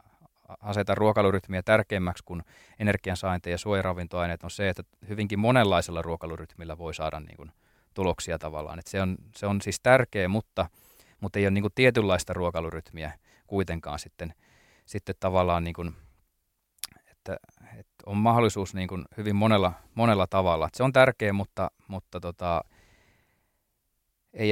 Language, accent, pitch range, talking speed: Finnish, native, 85-105 Hz, 145 wpm